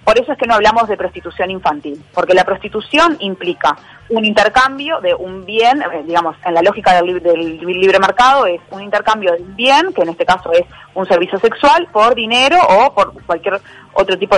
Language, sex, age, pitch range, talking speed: Spanish, female, 20-39, 175-235 Hz, 190 wpm